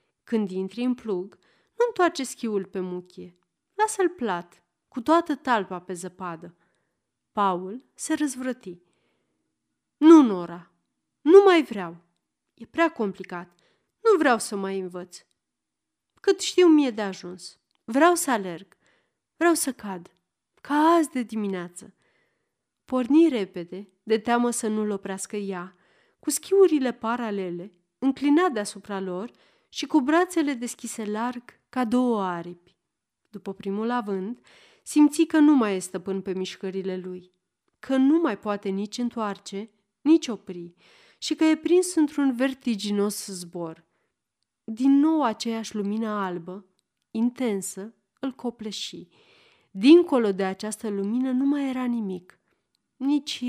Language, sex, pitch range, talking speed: Romanian, female, 190-275 Hz, 125 wpm